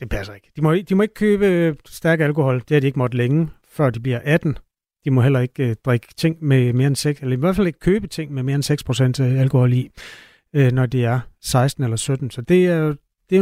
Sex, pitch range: male, 130-170 Hz